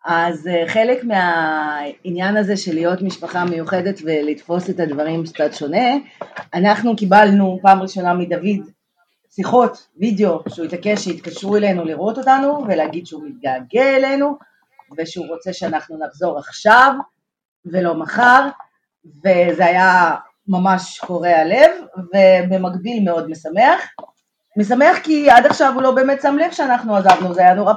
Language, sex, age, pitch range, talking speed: Hebrew, female, 30-49, 175-235 Hz, 125 wpm